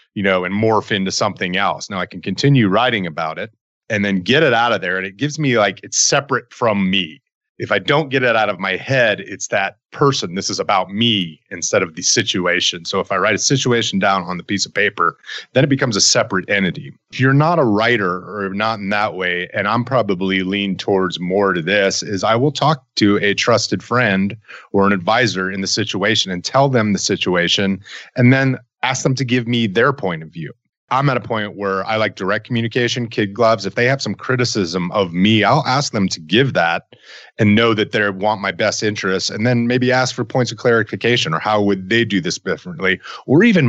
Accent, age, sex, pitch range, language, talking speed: American, 30-49, male, 95-125 Hz, English, 225 wpm